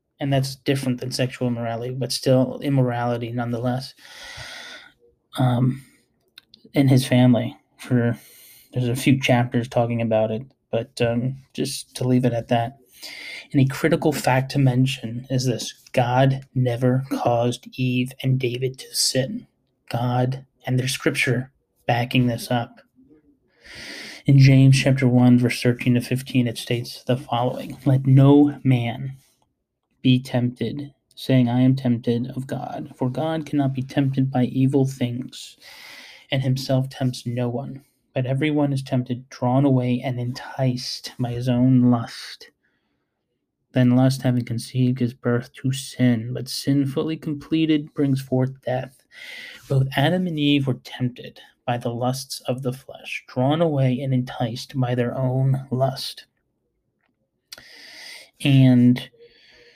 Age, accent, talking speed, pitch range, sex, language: 20-39, American, 140 wpm, 125-135 Hz, male, English